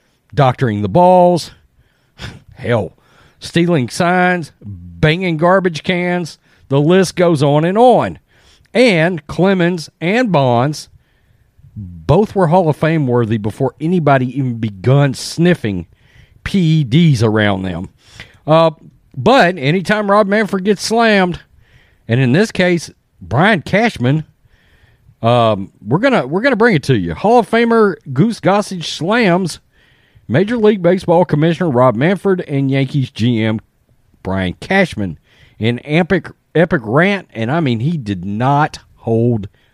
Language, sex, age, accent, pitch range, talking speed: English, male, 40-59, American, 125-190 Hz, 125 wpm